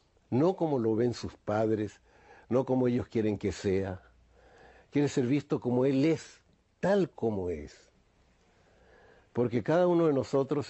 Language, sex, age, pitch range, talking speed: English, male, 60-79, 105-140 Hz, 145 wpm